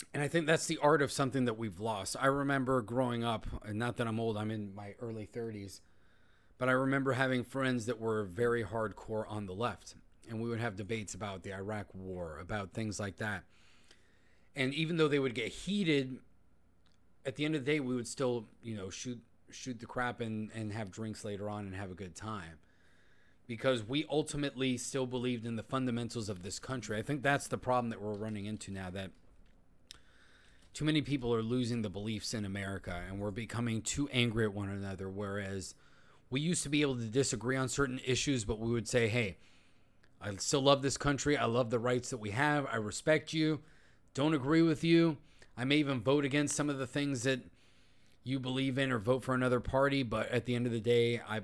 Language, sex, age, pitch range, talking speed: English, male, 30-49, 100-130 Hz, 215 wpm